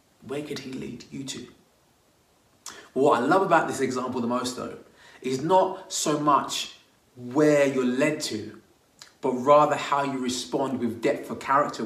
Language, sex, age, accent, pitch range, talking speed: English, male, 20-39, British, 130-170 Hz, 160 wpm